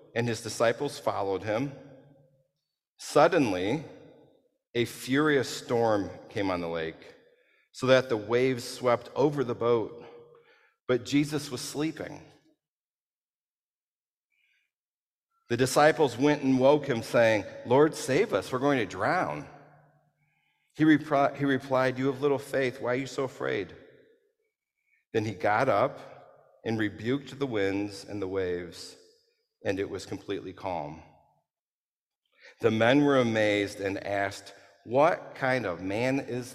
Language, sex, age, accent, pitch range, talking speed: English, male, 50-69, American, 115-150 Hz, 130 wpm